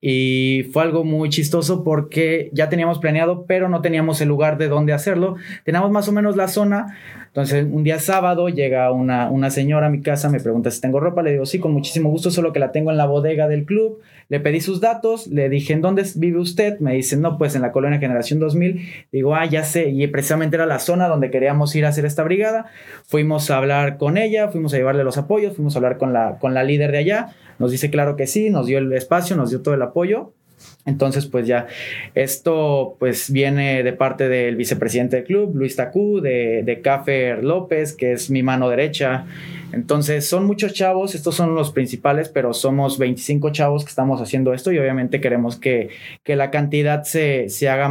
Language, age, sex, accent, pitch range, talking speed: Spanish, 30-49, male, Mexican, 135-170 Hz, 215 wpm